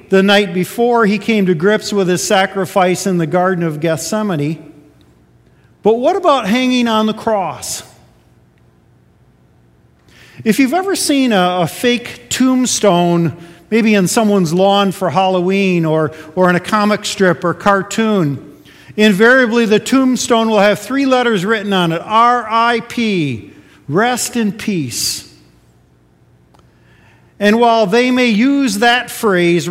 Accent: American